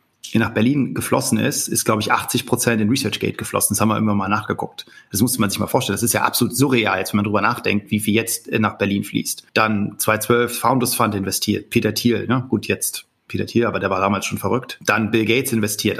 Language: German